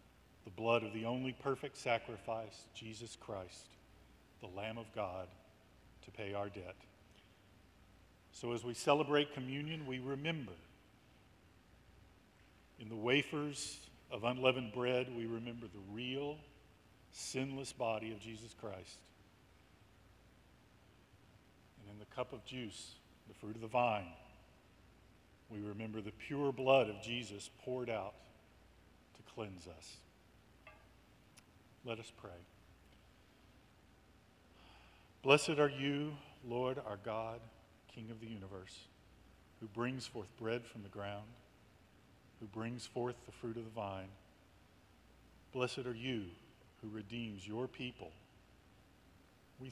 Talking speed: 120 wpm